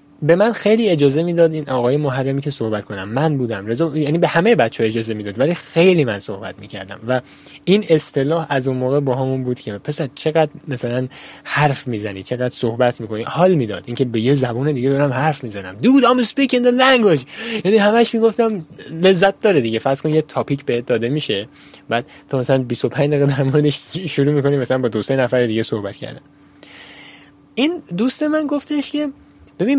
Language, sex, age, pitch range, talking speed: Persian, male, 10-29, 125-175 Hz, 190 wpm